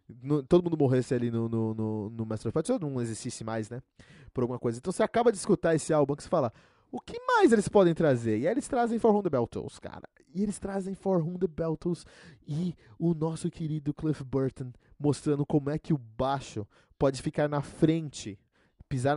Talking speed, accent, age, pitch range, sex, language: 215 wpm, Brazilian, 20-39, 115-155 Hz, male, Portuguese